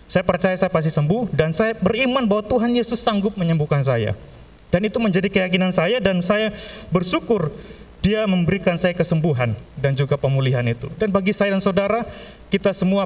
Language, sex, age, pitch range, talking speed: Indonesian, male, 30-49, 155-210 Hz, 170 wpm